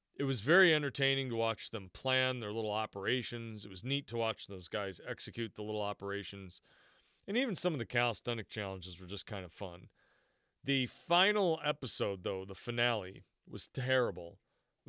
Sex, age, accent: male, 40-59, American